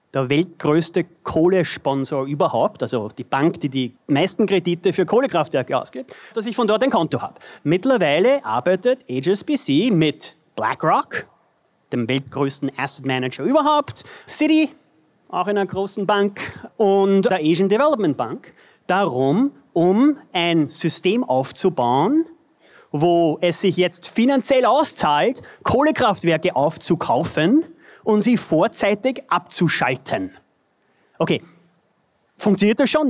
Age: 30-49